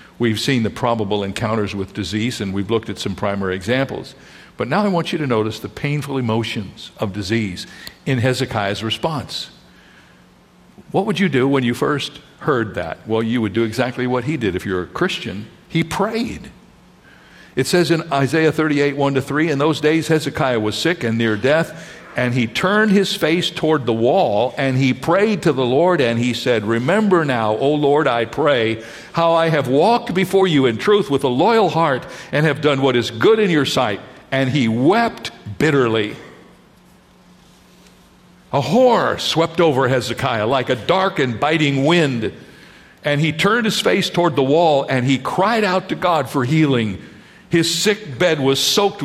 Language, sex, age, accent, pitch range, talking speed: English, male, 60-79, American, 115-165 Hz, 180 wpm